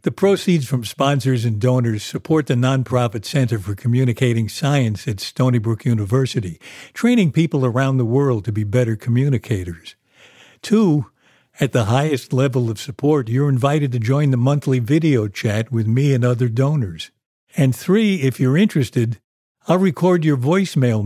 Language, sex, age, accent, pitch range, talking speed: English, male, 60-79, American, 115-145 Hz, 155 wpm